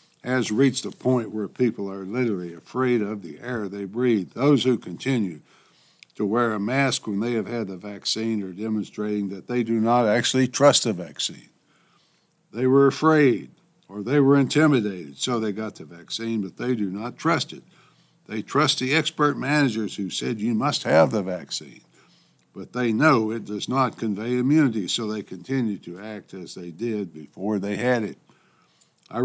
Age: 60-79